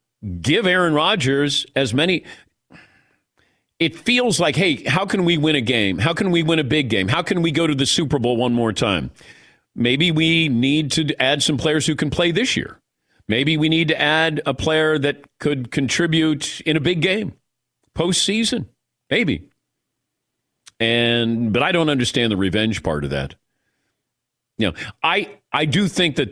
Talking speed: 180 wpm